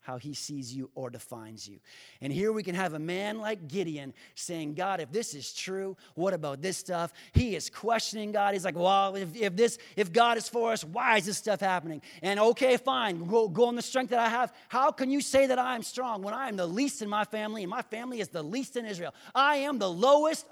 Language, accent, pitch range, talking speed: English, American, 150-230 Hz, 250 wpm